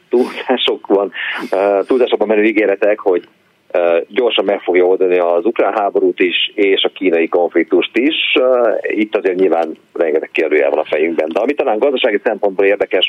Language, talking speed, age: Hungarian, 145 wpm, 40-59